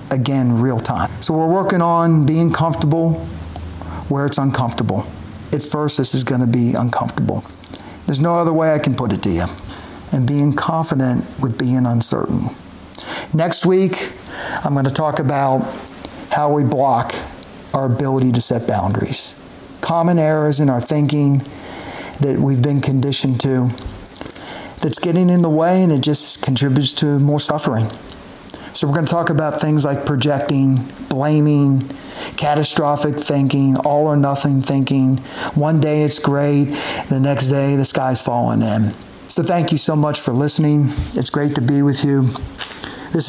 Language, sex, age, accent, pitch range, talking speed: English, male, 50-69, American, 130-155 Hz, 155 wpm